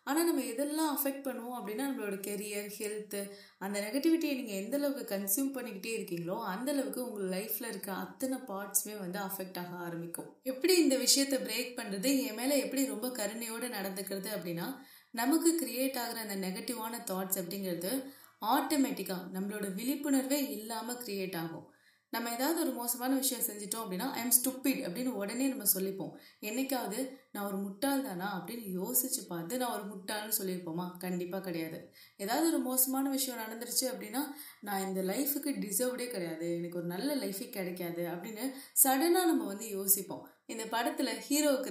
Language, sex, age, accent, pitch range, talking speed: Tamil, female, 20-39, native, 190-265 Hz, 145 wpm